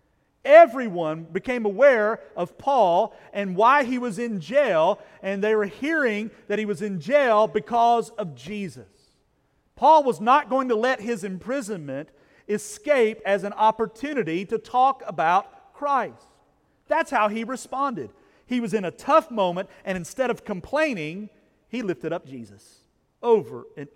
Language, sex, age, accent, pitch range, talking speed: English, male, 40-59, American, 160-220 Hz, 150 wpm